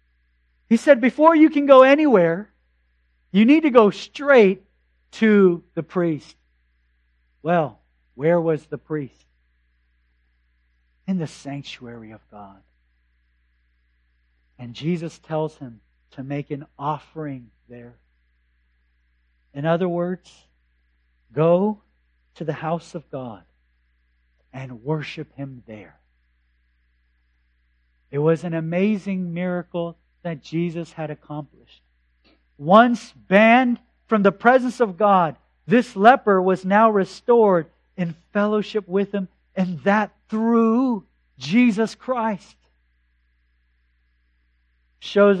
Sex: male